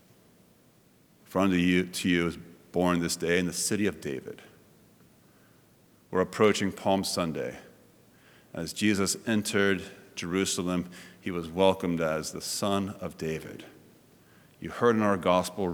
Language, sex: English, male